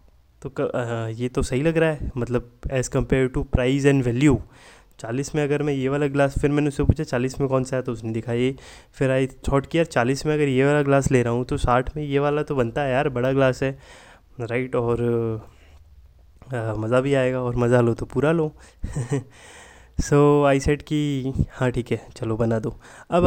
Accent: native